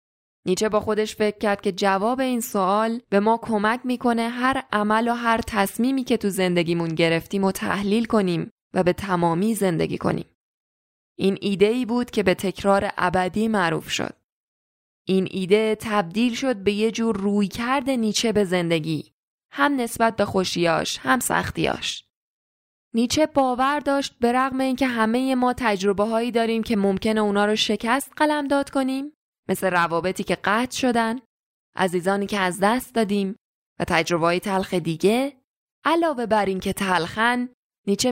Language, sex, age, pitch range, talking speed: Persian, female, 10-29, 185-230 Hz, 150 wpm